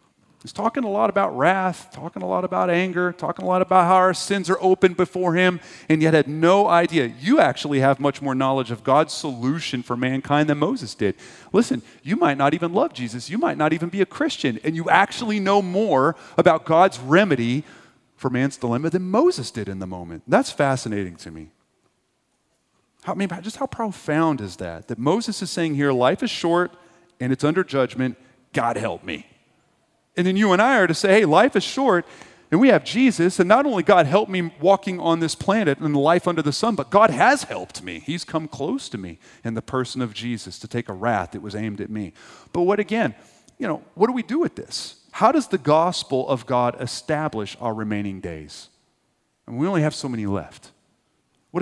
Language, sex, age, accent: English, male, 30-49, American